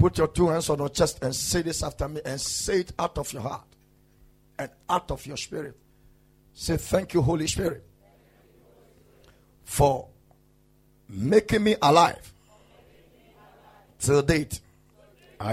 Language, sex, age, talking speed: English, male, 50-69, 135 wpm